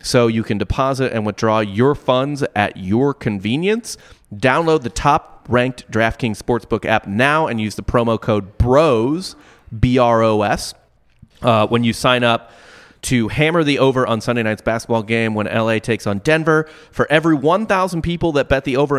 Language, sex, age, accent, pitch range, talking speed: English, male, 30-49, American, 105-135 Hz, 165 wpm